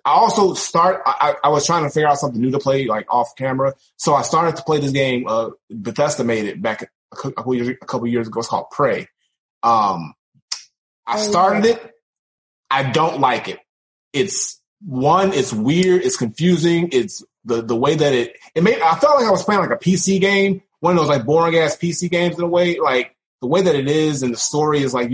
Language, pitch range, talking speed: English, 125-170 Hz, 220 wpm